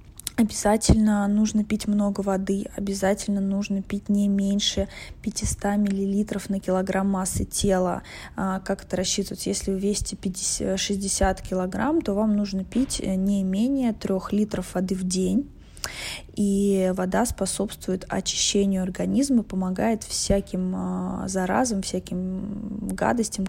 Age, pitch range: 20-39, 180-205 Hz